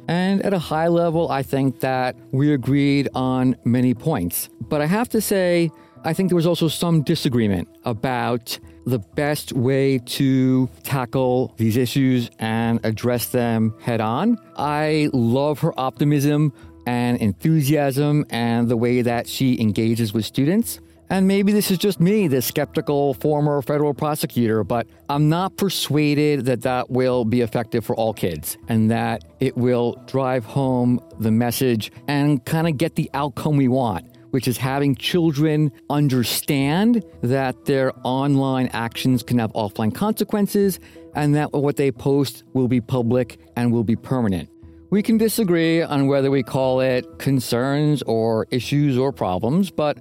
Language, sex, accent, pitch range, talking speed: English, male, American, 120-150 Hz, 155 wpm